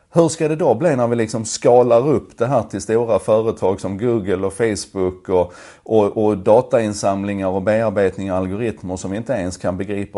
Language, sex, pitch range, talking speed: Swedish, male, 95-120 Hz, 195 wpm